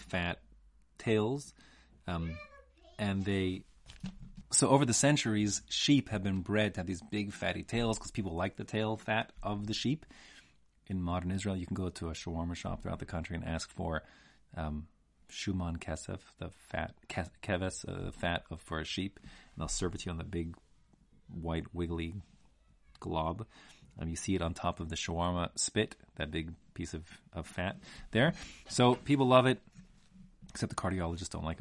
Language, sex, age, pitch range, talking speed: English, male, 30-49, 85-105 Hz, 180 wpm